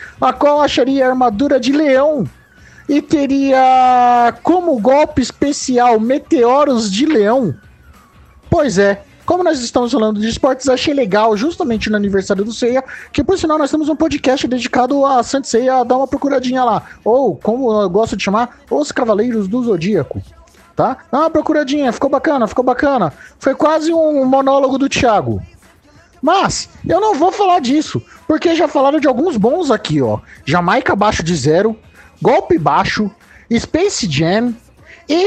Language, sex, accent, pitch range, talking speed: Portuguese, male, Brazilian, 230-310 Hz, 155 wpm